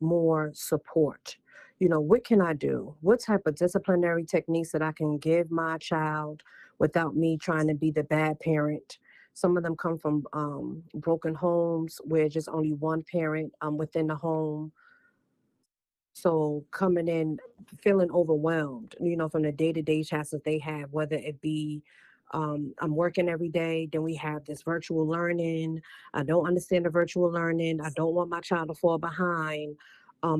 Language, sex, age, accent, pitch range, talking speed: English, female, 40-59, American, 155-175 Hz, 170 wpm